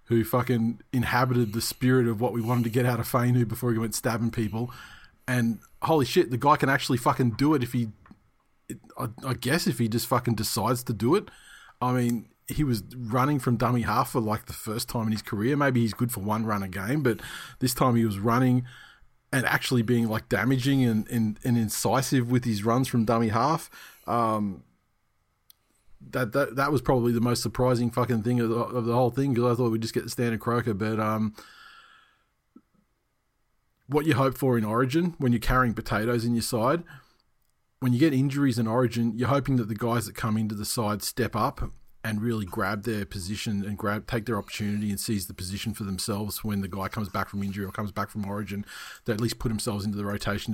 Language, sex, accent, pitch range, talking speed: English, male, Australian, 110-125 Hz, 215 wpm